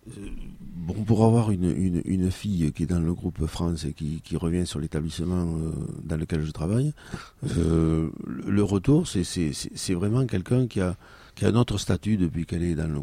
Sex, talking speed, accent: male, 205 wpm, French